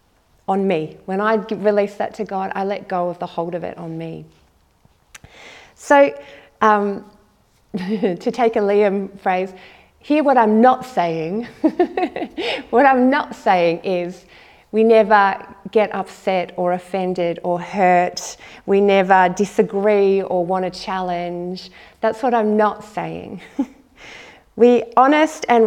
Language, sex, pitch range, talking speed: English, female, 190-230 Hz, 135 wpm